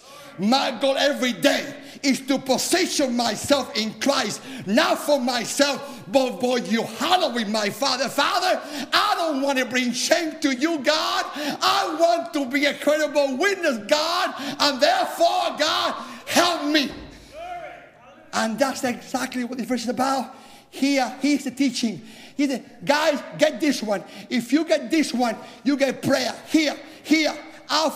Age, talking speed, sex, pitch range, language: 50-69, 150 wpm, male, 245-310 Hz, English